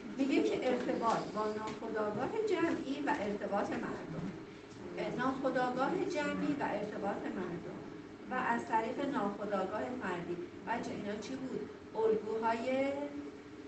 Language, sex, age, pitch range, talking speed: Persian, female, 40-59, 200-265 Hz, 105 wpm